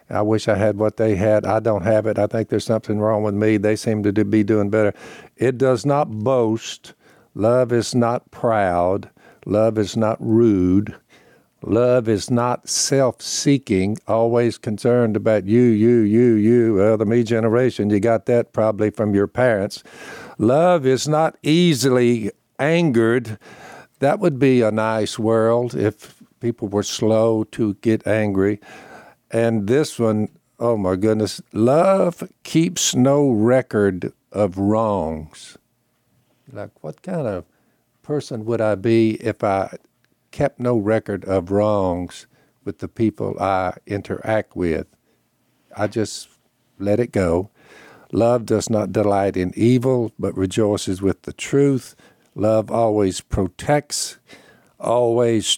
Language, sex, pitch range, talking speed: English, male, 105-120 Hz, 140 wpm